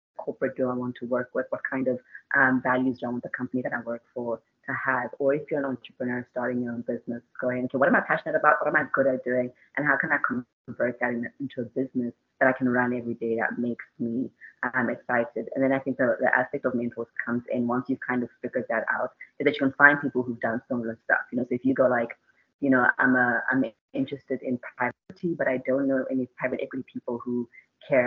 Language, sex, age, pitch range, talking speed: English, female, 20-39, 125-145 Hz, 255 wpm